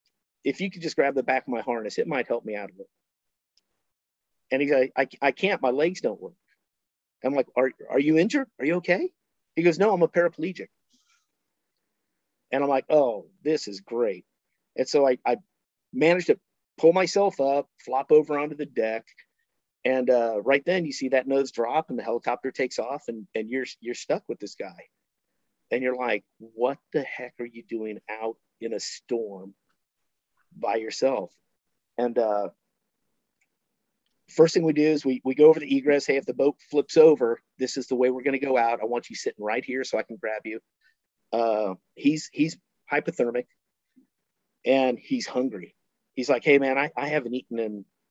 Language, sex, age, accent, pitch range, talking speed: English, male, 50-69, American, 120-155 Hz, 195 wpm